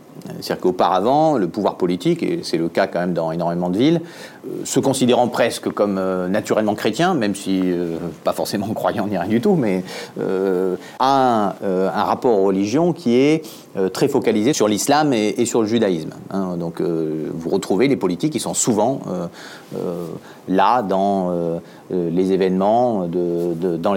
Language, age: French, 40-59